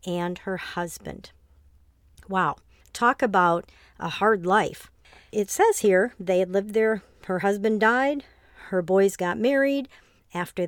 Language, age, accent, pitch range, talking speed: English, 50-69, American, 180-235 Hz, 135 wpm